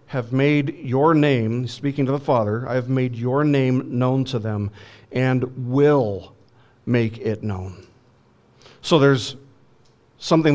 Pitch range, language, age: 120-155 Hz, English, 50-69